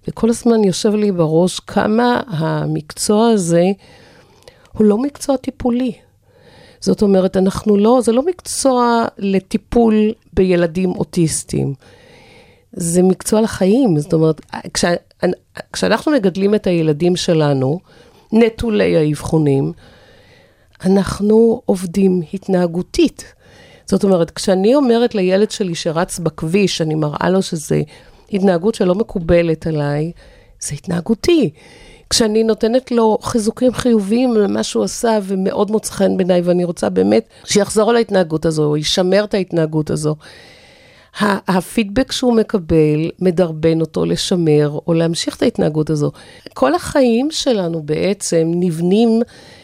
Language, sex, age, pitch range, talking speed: Hebrew, female, 50-69, 165-220 Hz, 115 wpm